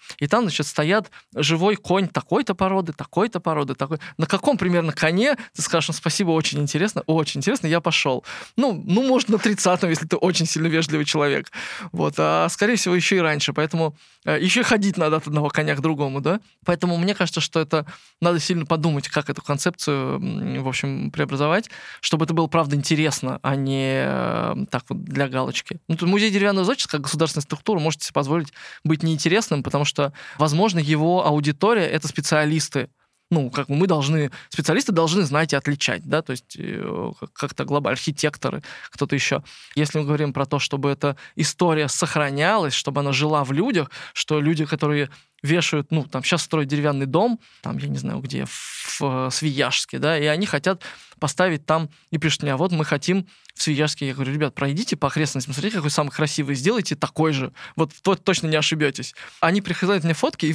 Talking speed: 185 wpm